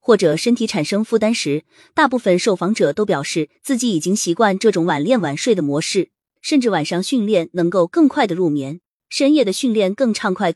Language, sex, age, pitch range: Chinese, female, 20-39, 170-250 Hz